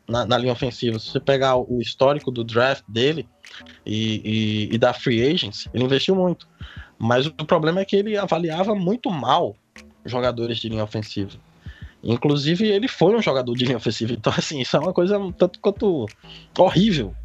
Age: 20-39